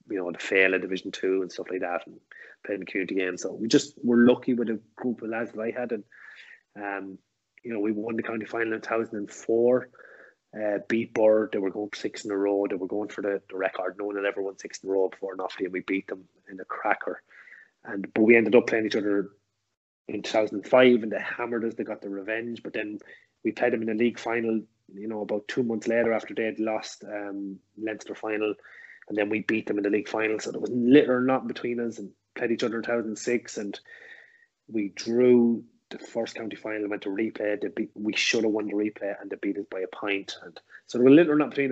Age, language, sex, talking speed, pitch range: 20-39, English, male, 245 wpm, 100-120 Hz